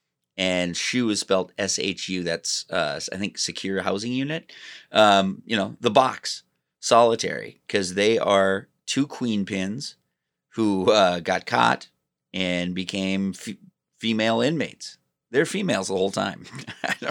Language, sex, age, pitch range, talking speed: English, male, 30-49, 85-110 Hz, 130 wpm